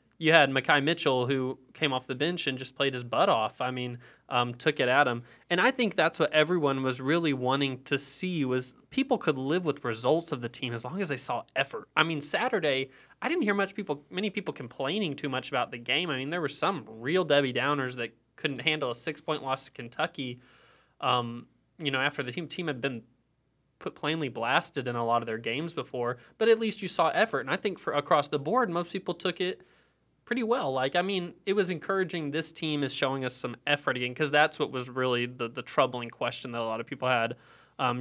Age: 20-39